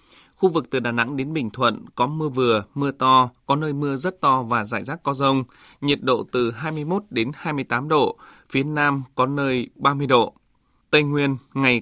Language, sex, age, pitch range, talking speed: Vietnamese, male, 20-39, 120-145 Hz, 200 wpm